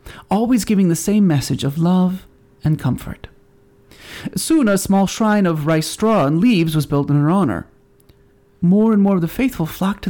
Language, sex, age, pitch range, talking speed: English, male, 30-49, 145-205 Hz, 185 wpm